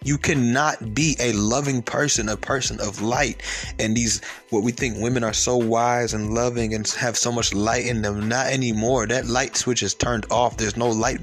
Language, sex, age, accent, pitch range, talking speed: English, male, 20-39, American, 115-150 Hz, 210 wpm